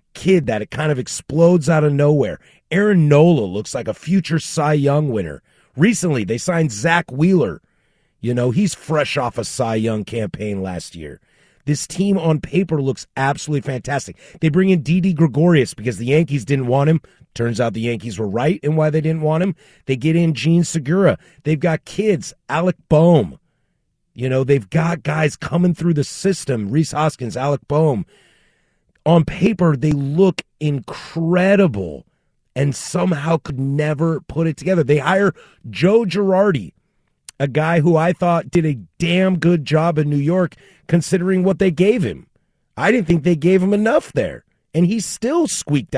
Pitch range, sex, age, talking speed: 135-180 Hz, male, 30-49, 175 wpm